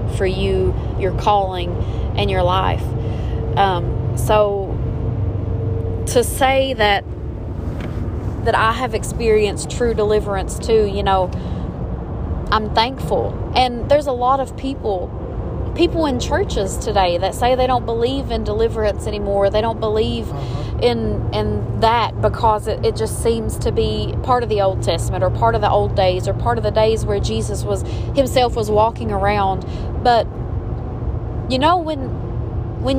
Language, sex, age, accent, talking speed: English, female, 30-49, American, 150 wpm